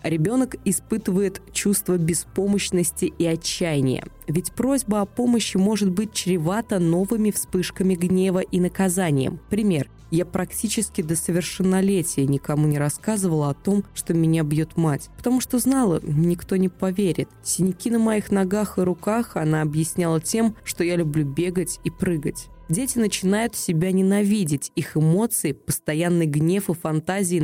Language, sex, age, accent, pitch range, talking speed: Russian, female, 20-39, native, 155-195 Hz, 140 wpm